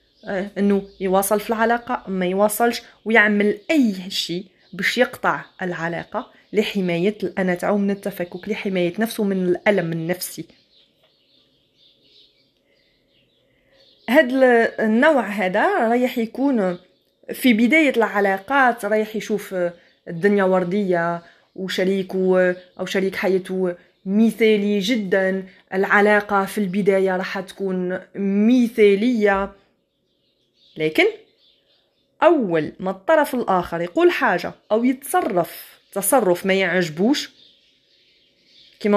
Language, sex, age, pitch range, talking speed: Arabic, female, 30-49, 185-220 Hz, 90 wpm